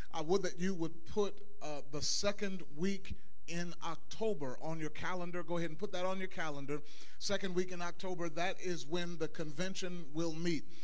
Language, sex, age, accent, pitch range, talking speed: English, male, 40-59, American, 155-185 Hz, 190 wpm